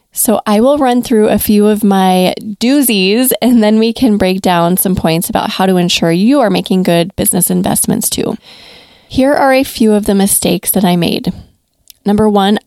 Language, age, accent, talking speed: English, 20-39, American, 195 wpm